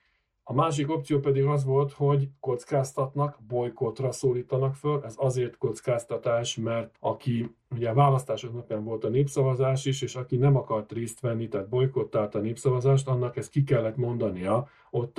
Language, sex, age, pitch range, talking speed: Hungarian, male, 40-59, 110-140 Hz, 160 wpm